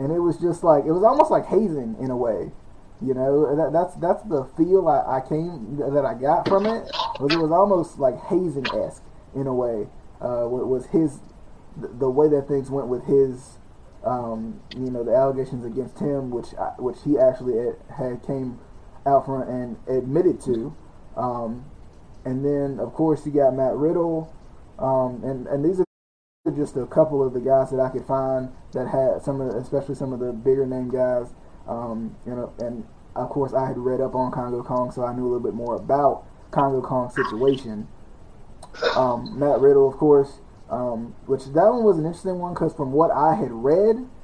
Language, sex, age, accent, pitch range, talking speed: English, male, 20-39, American, 125-160 Hz, 200 wpm